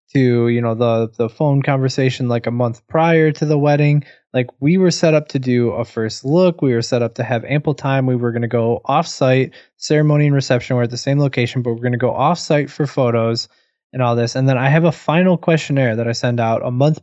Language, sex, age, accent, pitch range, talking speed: English, male, 20-39, American, 120-140 Hz, 245 wpm